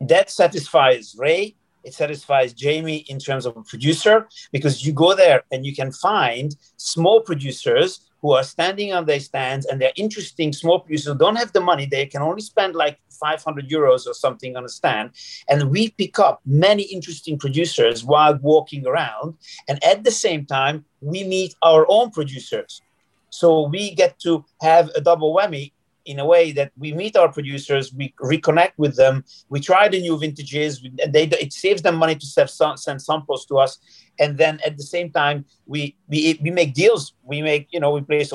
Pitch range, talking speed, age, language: 140-170 Hz, 190 wpm, 40-59, English